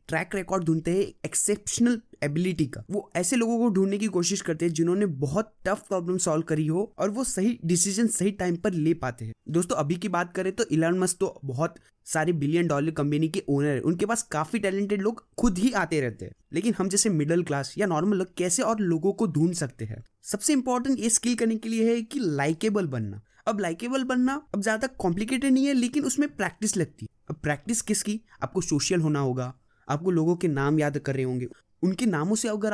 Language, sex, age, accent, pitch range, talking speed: Hindi, male, 20-39, native, 150-215 Hz, 215 wpm